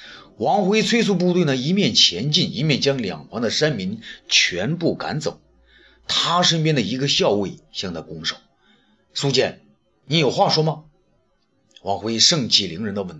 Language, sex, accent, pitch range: Chinese, male, native, 135-200 Hz